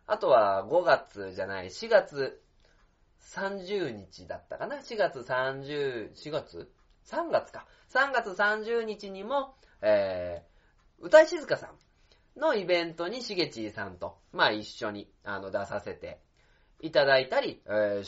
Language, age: Japanese, 20-39